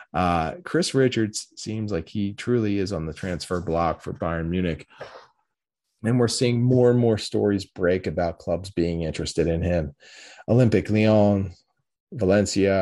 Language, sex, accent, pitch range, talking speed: English, male, American, 85-110 Hz, 150 wpm